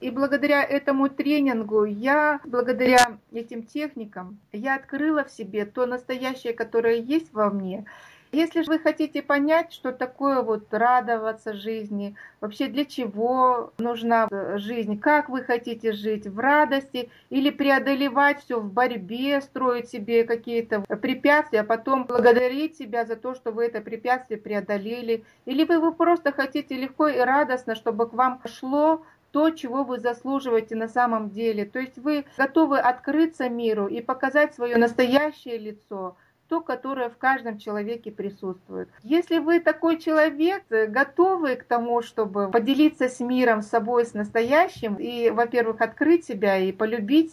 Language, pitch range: Russian, 225-280 Hz